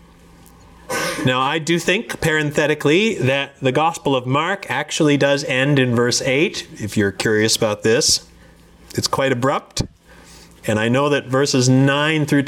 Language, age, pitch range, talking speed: English, 40-59, 90-135 Hz, 150 wpm